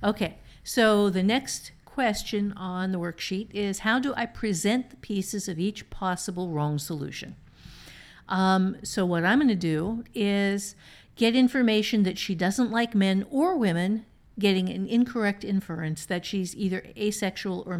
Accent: American